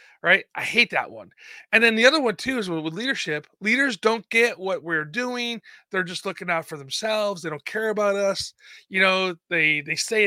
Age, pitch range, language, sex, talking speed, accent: 30-49, 165-240 Hz, English, male, 210 wpm, American